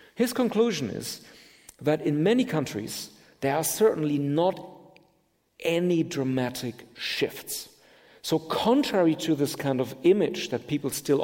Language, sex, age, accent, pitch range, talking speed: Danish, male, 40-59, German, 125-160 Hz, 130 wpm